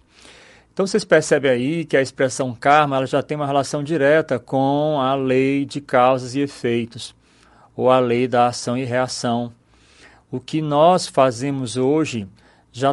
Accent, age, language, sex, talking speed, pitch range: Brazilian, 40-59, Portuguese, male, 160 wpm, 120-150 Hz